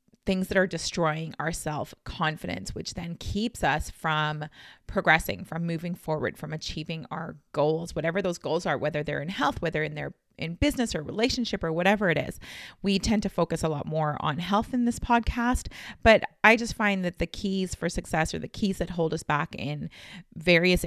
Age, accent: 30-49, American